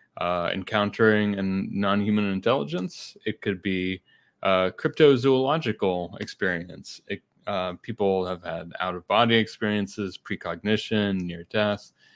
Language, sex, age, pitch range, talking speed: English, male, 30-49, 95-115 Hz, 105 wpm